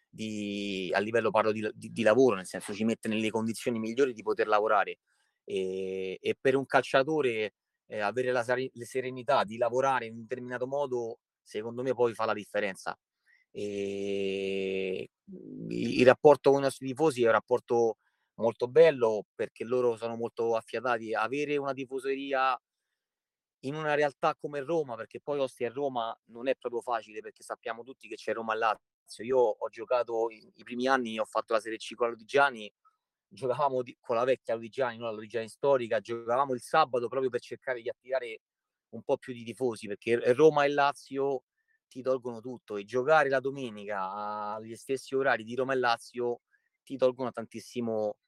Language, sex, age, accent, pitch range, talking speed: Italian, male, 30-49, native, 115-135 Hz, 170 wpm